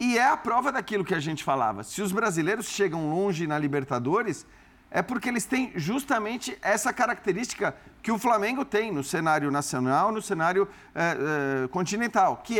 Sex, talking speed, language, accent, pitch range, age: male, 165 wpm, Portuguese, Brazilian, 160-210 Hz, 50-69